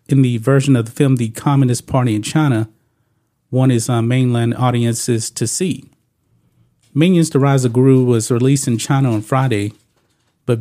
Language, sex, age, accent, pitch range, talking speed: English, male, 40-59, American, 115-140 Hz, 175 wpm